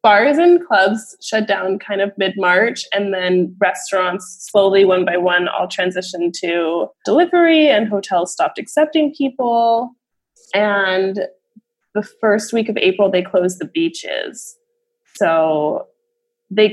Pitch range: 185-275 Hz